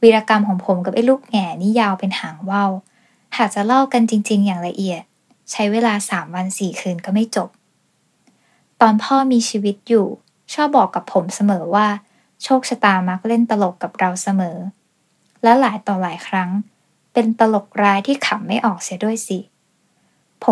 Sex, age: female, 10-29